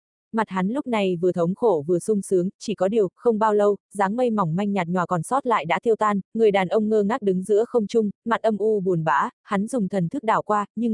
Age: 20-39